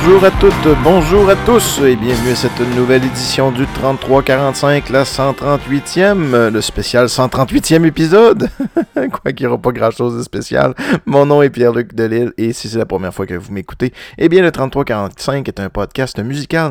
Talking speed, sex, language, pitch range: 185 wpm, male, French, 110-145 Hz